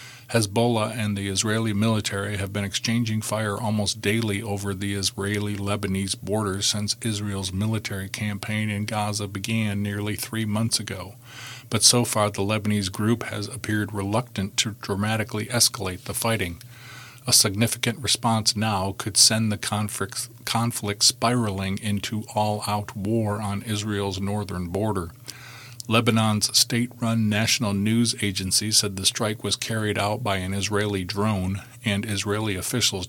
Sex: male